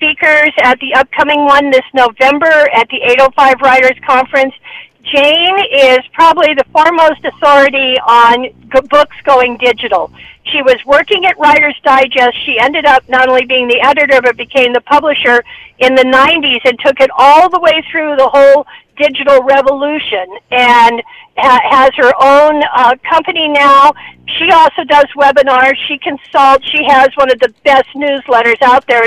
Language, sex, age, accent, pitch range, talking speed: English, female, 50-69, American, 260-310 Hz, 160 wpm